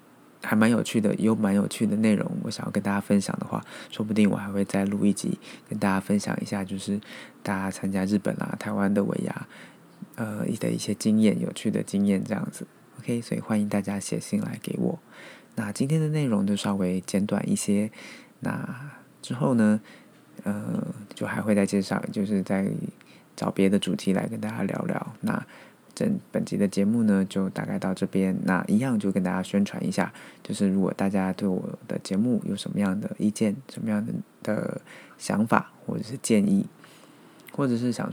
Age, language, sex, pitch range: 20-39, Chinese, male, 100-135 Hz